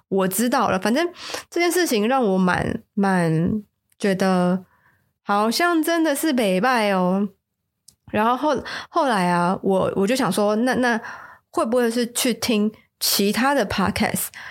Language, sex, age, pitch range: Chinese, female, 20-39, 195-250 Hz